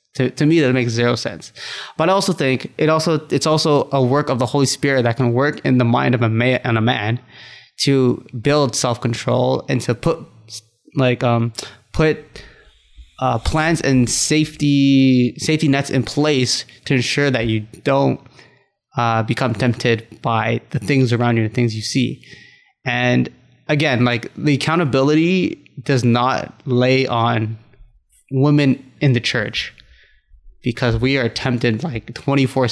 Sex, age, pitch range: male, 20-39, 120-140 Hz